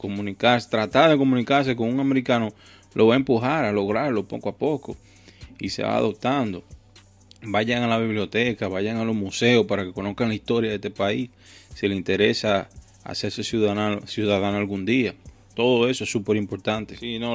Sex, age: male, 20-39